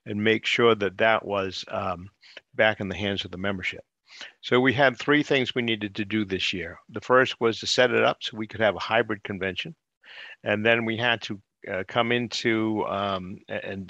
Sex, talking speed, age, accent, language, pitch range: male, 210 wpm, 50-69, American, English, 100-115 Hz